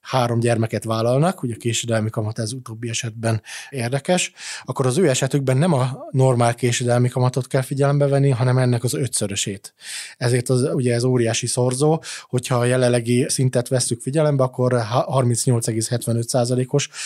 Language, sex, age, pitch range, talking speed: Hungarian, male, 20-39, 120-135 Hz, 145 wpm